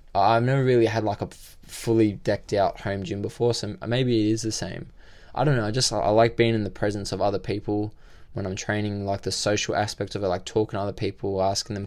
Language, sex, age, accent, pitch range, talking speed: English, male, 20-39, Australian, 95-115 Hz, 245 wpm